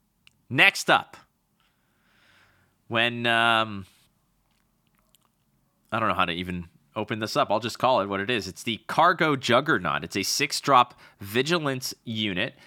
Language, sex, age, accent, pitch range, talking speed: English, male, 30-49, American, 100-135 Hz, 140 wpm